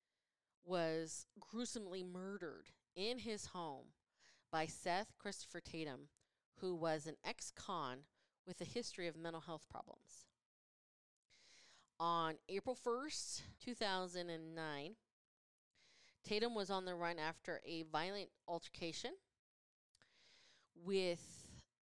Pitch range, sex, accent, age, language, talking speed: 170-220 Hz, female, American, 30-49, English, 95 wpm